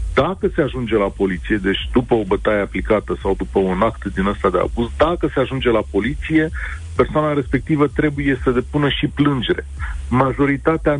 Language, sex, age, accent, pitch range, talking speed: Romanian, male, 40-59, native, 100-135 Hz, 170 wpm